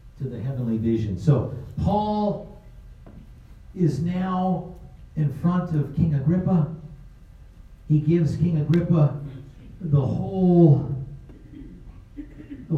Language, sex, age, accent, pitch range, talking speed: English, male, 50-69, American, 110-145 Hz, 95 wpm